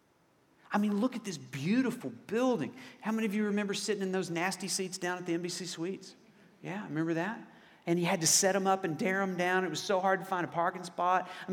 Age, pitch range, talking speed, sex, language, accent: 40-59, 165-215 Hz, 240 wpm, male, English, American